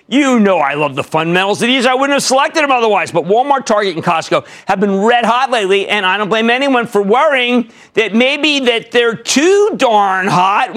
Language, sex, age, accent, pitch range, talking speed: English, male, 50-69, American, 155-255 Hz, 210 wpm